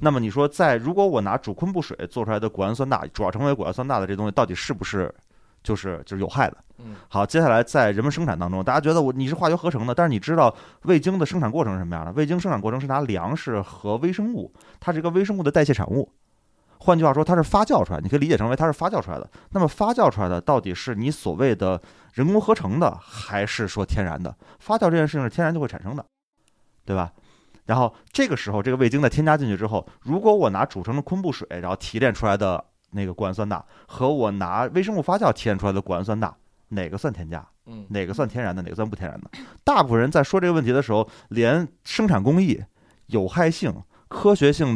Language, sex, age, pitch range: Chinese, male, 20-39, 100-155 Hz